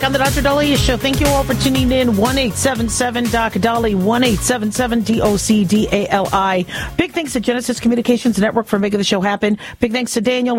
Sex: female